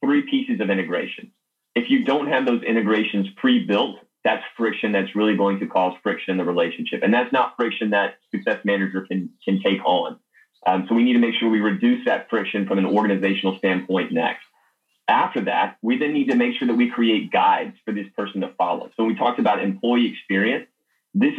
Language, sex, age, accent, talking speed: English, male, 30-49, American, 205 wpm